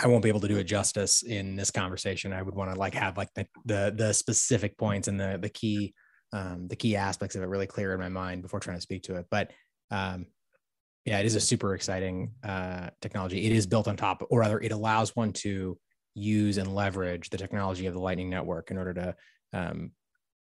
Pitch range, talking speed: 95-105 Hz, 230 wpm